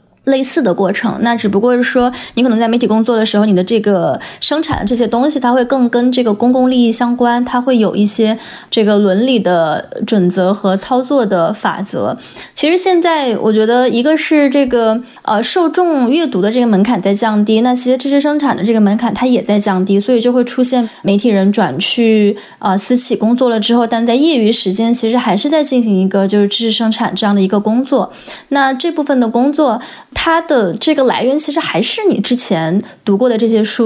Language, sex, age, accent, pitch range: Chinese, female, 20-39, native, 210-255 Hz